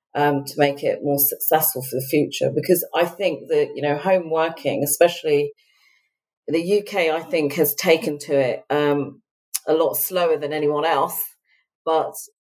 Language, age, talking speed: English, 40-59, 160 wpm